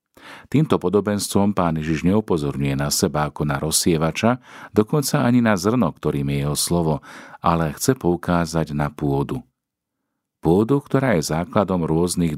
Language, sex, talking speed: Slovak, male, 135 wpm